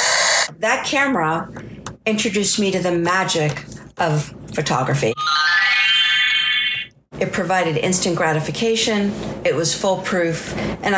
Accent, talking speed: American, 95 wpm